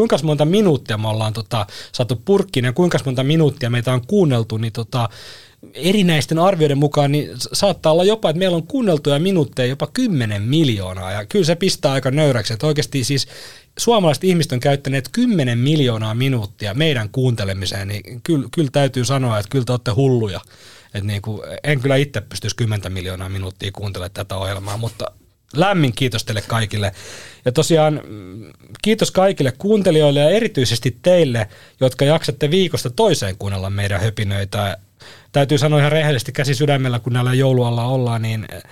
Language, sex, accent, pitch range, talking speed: Finnish, male, native, 110-150 Hz, 160 wpm